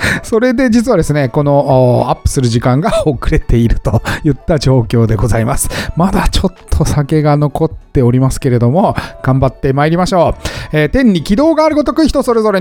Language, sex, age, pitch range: Japanese, male, 40-59, 135-215 Hz